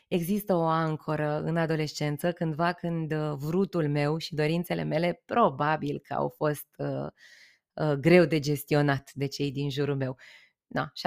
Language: Romanian